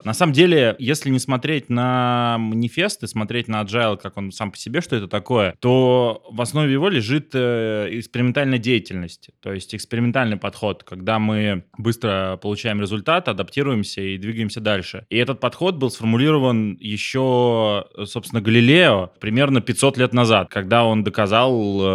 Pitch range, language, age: 105-125 Hz, Russian, 20-39